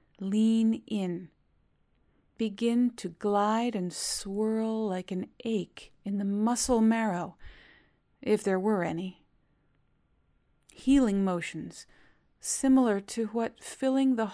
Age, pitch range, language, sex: 40-59, 190-225 Hz, English, female